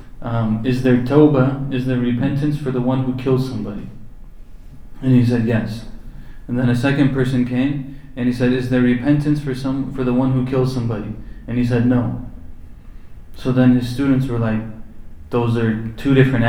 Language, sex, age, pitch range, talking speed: English, male, 20-39, 115-135 Hz, 185 wpm